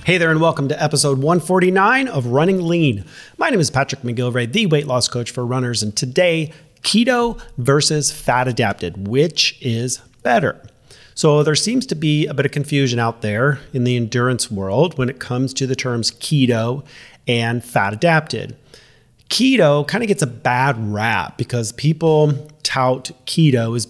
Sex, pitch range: male, 120-150 Hz